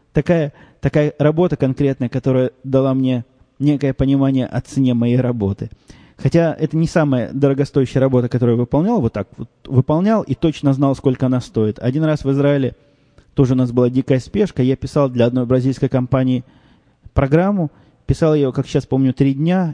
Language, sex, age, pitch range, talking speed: Russian, male, 20-39, 125-145 Hz, 170 wpm